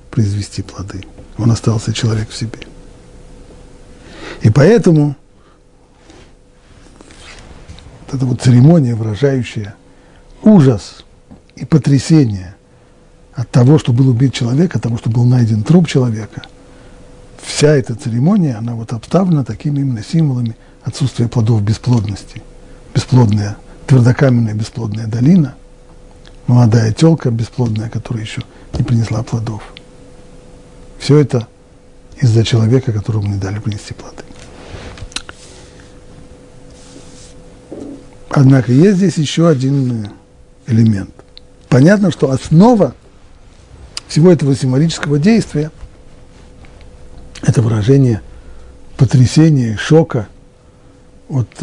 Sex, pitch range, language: male, 110-140 Hz, Russian